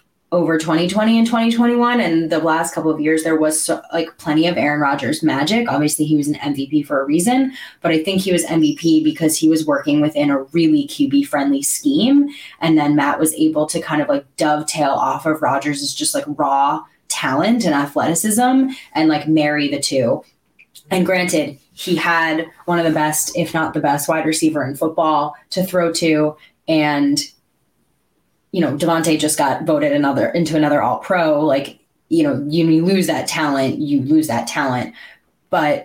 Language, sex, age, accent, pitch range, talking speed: English, female, 20-39, American, 150-175 Hz, 185 wpm